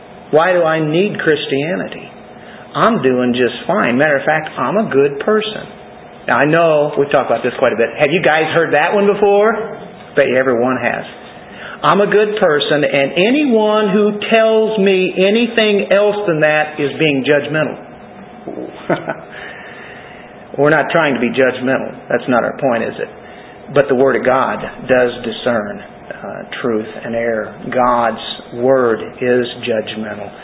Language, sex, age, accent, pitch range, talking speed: English, male, 50-69, American, 115-170 Hz, 160 wpm